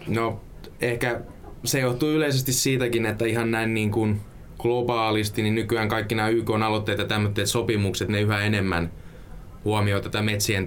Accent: native